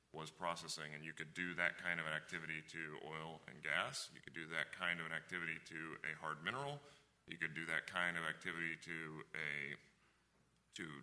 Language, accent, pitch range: English, American, 80-95 Hz